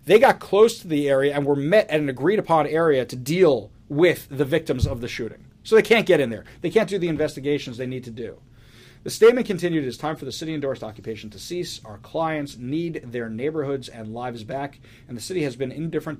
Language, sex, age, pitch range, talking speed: English, male, 40-59, 120-175 Hz, 230 wpm